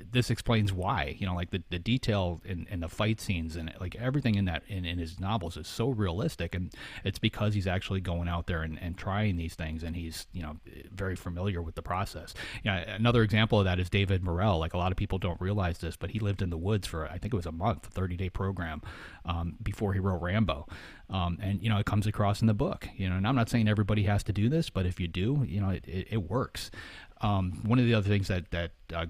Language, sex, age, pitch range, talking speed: English, male, 30-49, 85-105 Hz, 265 wpm